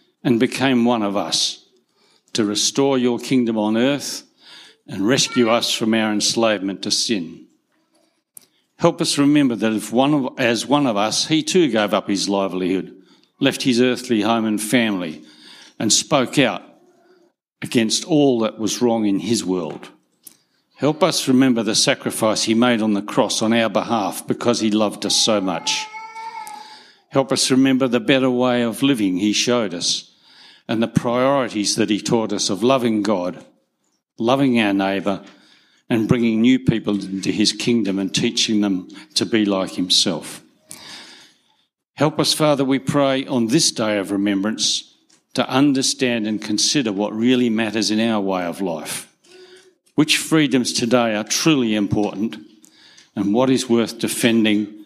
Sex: male